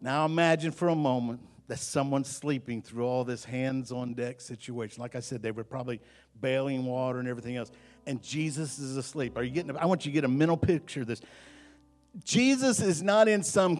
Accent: American